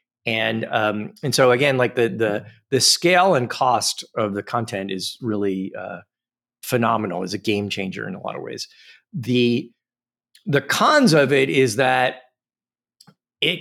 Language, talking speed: English, 160 wpm